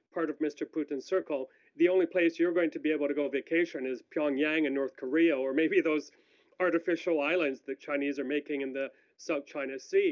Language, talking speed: English, 210 wpm